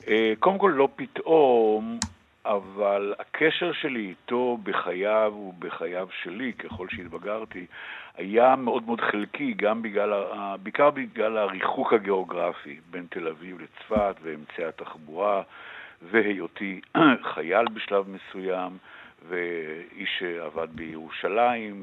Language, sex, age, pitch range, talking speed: Hebrew, male, 60-79, 95-115 Hz, 100 wpm